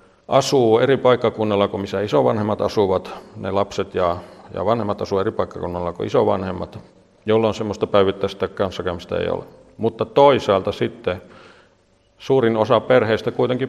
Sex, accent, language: male, native, Finnish